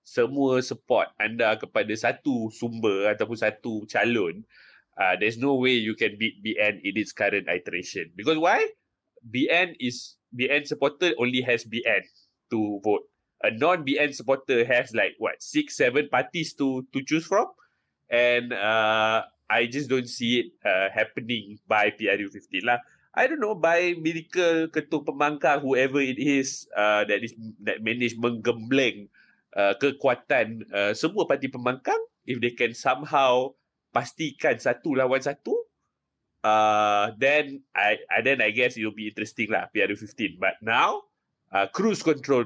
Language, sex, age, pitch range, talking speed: Malay, male, 20-39, 110-150 Hz, 145 wpm